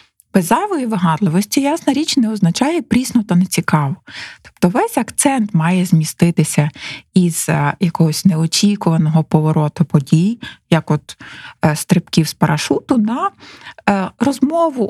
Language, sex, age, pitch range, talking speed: Ukrainian, female, 20-39, 160-210 Hz, 105 wpm